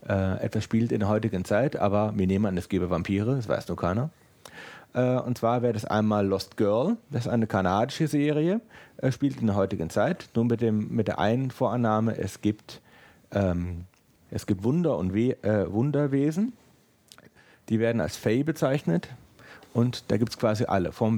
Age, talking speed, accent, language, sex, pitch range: 40-59, 185 wpm, German, German, male, 100-130 Hz